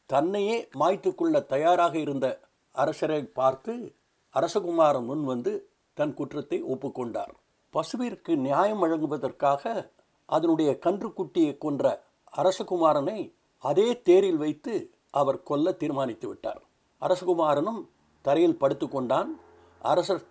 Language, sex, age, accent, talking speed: Tamil, male, 60-79, native, 90 wpm